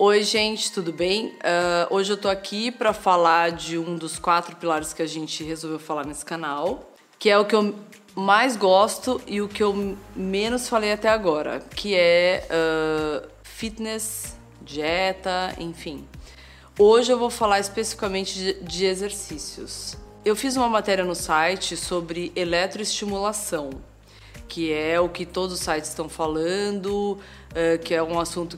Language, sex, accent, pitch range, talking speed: Portuguese, female, Brazilian, 165-200 Hz, 155 wpm